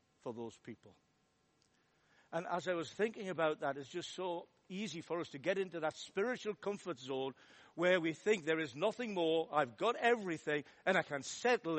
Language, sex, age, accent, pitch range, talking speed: English, male, 60-79, British, 155-205 Hz, 190 wpm